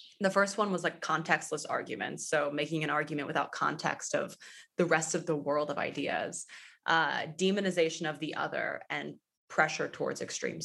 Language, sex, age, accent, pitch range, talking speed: English, female, 20-39, American, 155-185 Hz, 170 wpm